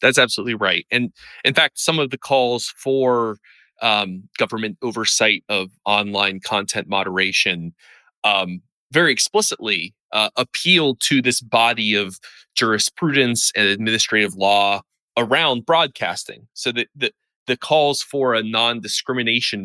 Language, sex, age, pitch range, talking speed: English, male, 30-49, 100-125 Hz, 125 wpm